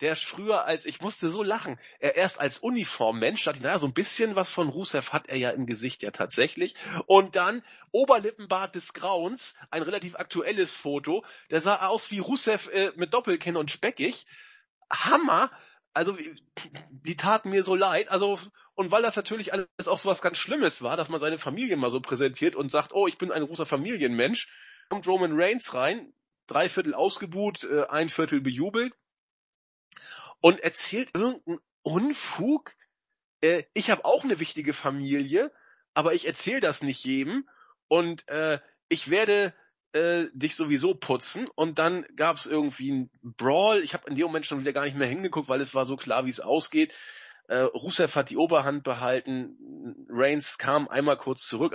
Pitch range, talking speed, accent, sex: 145-220 Hz, 175 wpm, German, male